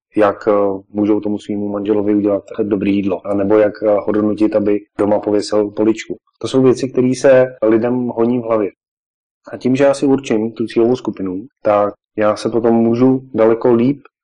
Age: 30-49